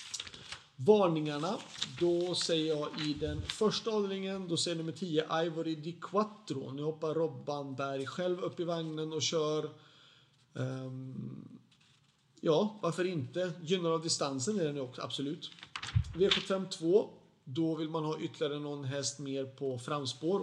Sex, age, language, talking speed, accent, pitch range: male, 40-59, Swedish, 140 wpm, native, 140-175 Hz